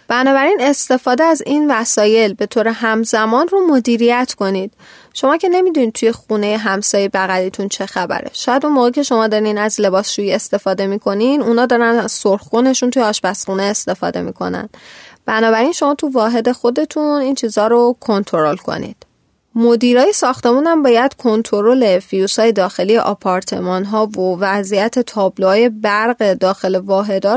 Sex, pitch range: female, 200-250 Hz